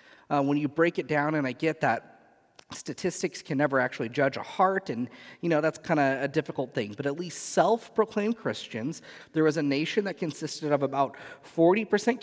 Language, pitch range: English, 135-180 Hz